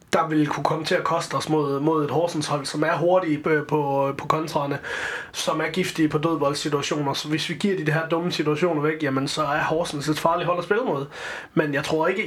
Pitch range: 150-175 Hz